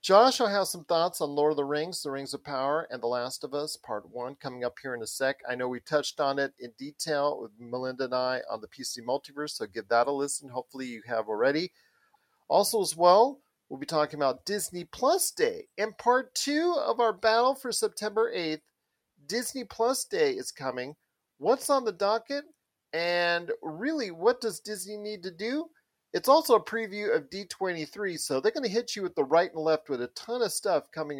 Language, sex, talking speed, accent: English, male, 215 wpm, American